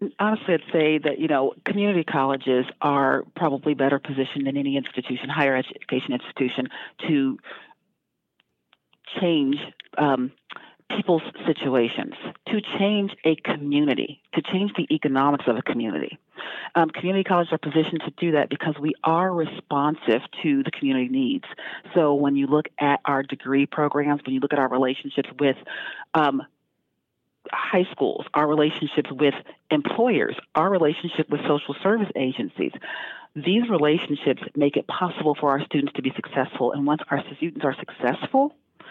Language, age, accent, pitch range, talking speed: English, 40-59, American, 140-170 Hz, 145 wpm